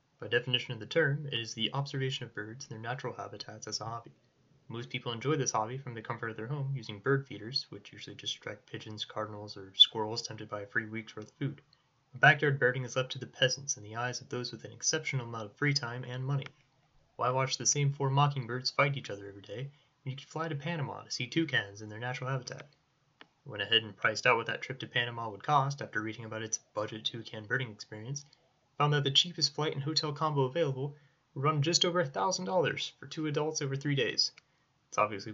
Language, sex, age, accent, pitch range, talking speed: English, male, 10-29, American, 115-145 Hz, 230 wpm